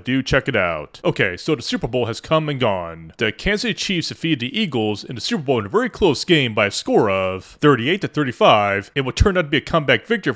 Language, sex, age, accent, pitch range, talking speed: English, male, 30-49, American, 115-165 Hz, 255 wpm